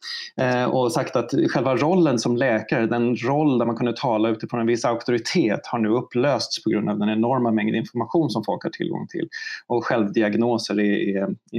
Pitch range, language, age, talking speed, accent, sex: 110-165 Hz, Swedish, 20-39, 180 wpm, native, male